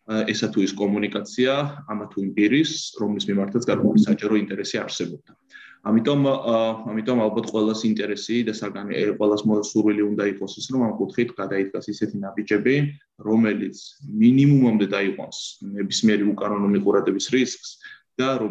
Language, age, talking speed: English, 20-39, 85 wpm